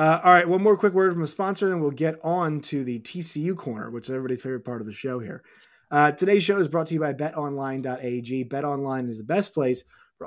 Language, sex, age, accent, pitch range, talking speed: English, male, 20-39, American, 130-160 Hz, 250 wpm